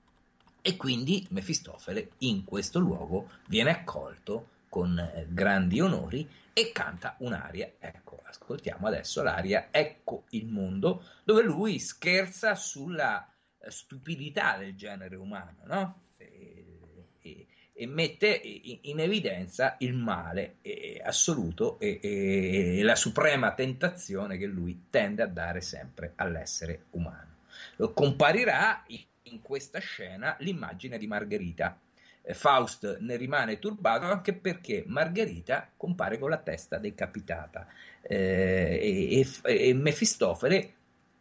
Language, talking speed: Italian, 115 wpm